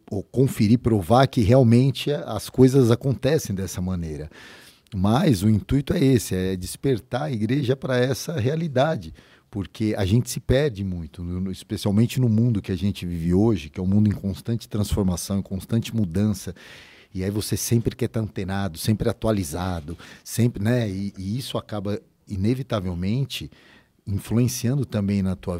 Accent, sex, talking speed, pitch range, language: Brazilian, male, 150 wpm, 95-125 Hz, Portuguese